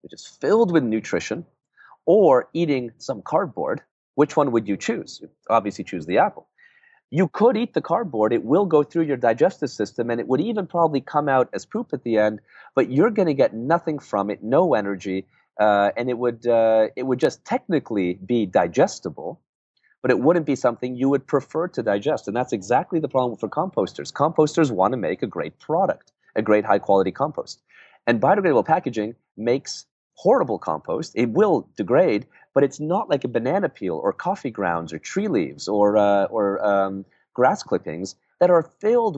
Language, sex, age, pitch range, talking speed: English, male, 30-49, 105-155 Hz, 190 wpm